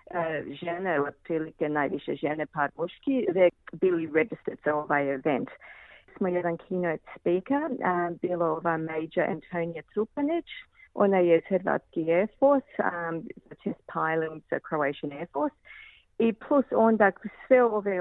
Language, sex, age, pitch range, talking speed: Croatian, female, 40-59, 165-215 Hz, 140 wpm